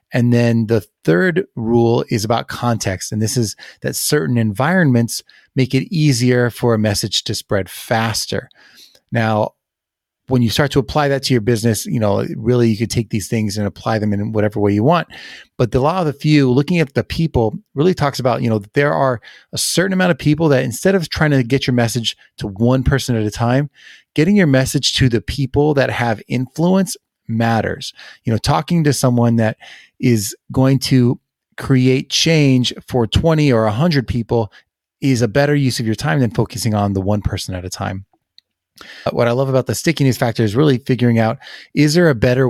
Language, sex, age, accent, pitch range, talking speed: English, male, 30-49, American, 110-135 Hz, 200 wpm